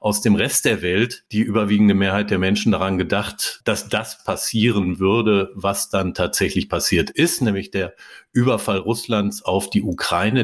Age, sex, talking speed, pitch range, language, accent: 50-69, male, 160 wpm, 95-115 Hz, German, German